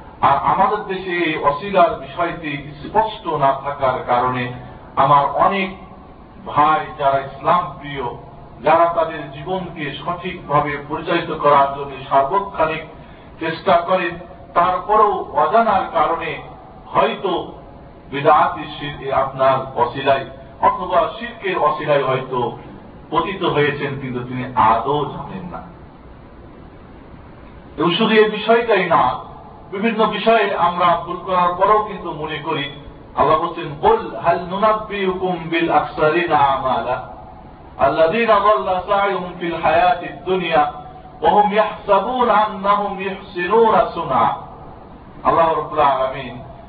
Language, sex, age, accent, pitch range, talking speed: Bengali, male, 50-69, native, 140-190 Hz, 100 wpm